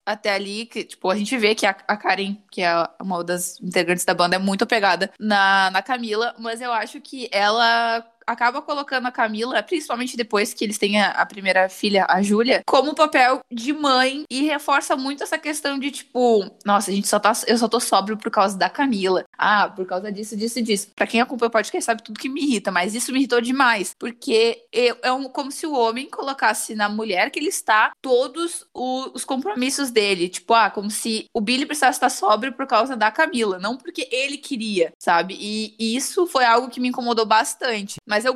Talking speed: 215 wpm